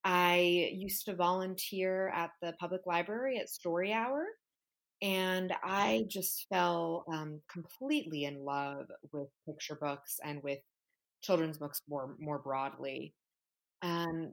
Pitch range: 160-220 Hz